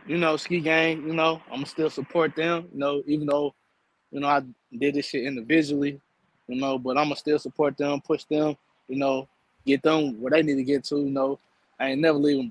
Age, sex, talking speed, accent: 20-39, male, 225 wpm, American